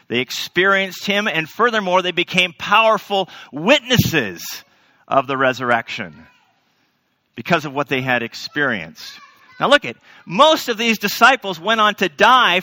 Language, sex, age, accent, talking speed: English, male, 40-59, American, 140 wpm